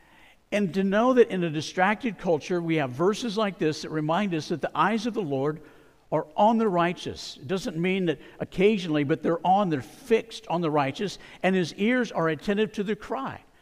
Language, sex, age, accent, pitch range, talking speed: English, male, 60-79, American, 165-215 Hz, 205 wpm